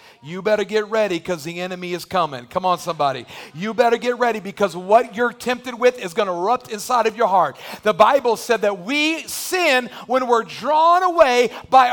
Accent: American